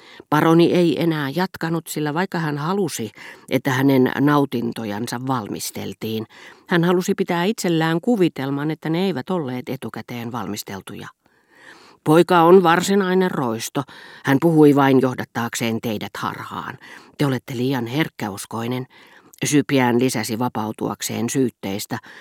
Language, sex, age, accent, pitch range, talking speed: Finnish, female, 40-59, native, 120-165 Hz, 110 wpm